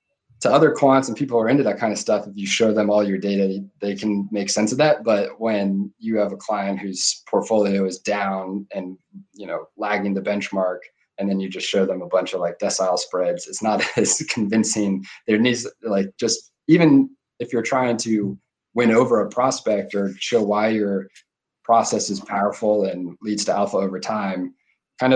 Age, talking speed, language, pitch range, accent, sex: 20-39, 205 wpm, English, 95-110 Hz, American, male